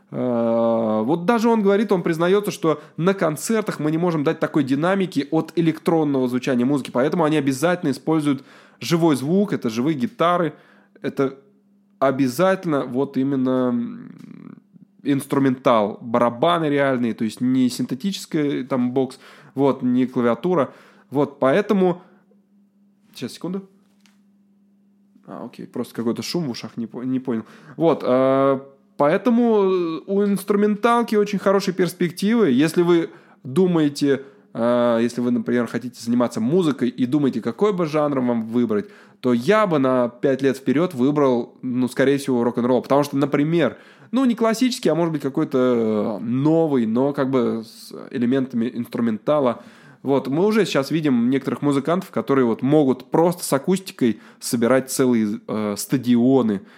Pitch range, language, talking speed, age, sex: 130-195 Hz, Russian, 135 wpm, 20-39, male